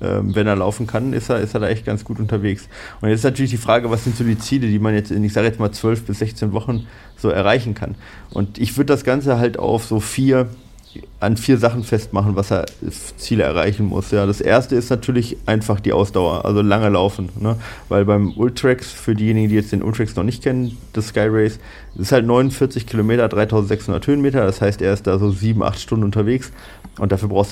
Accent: German